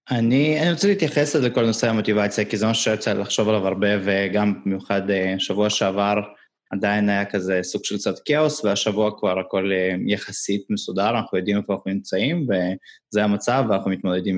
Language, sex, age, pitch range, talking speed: Hebrew, male, 20-39, 100-125 Hz, 165 wpm